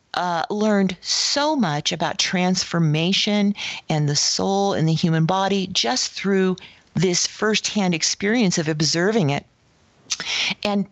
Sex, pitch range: female, 165-195 Hz